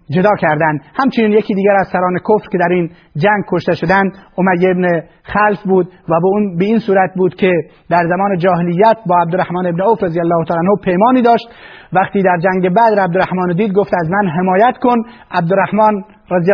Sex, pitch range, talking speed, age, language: male, 180-215 Hz, 180 wpm, 30-49, Persian